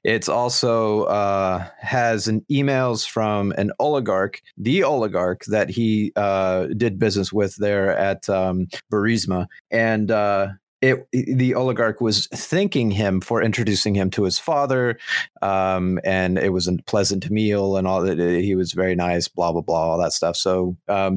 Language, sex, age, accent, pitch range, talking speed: English, male, 30-49, American, 95-110 Hz, 160 wpm